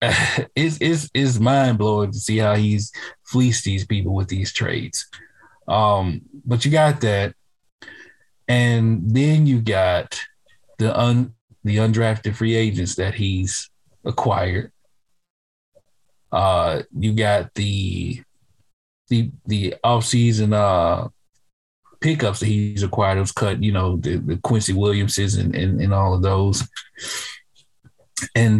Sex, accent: male, American